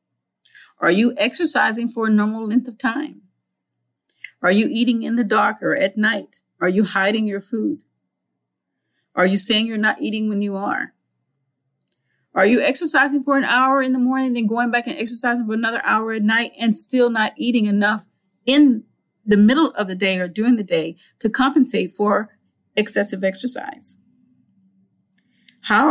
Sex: female